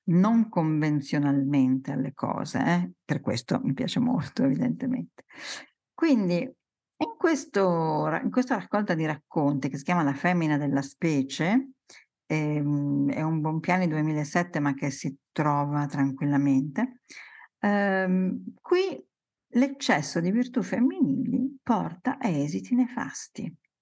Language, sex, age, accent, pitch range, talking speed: Italian, female, 50-69, native, 155-250 Hz, 120 wpm